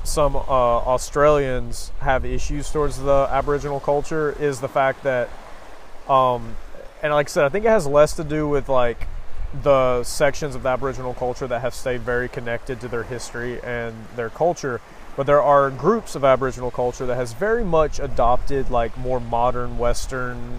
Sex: male